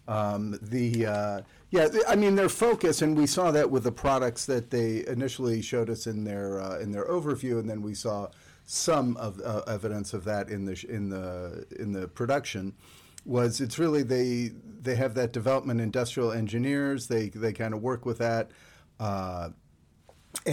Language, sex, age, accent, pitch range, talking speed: English, male, 50-69, American, 100-125 Hz, 185 wpm